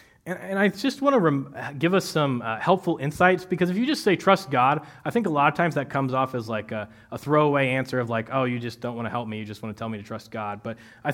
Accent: American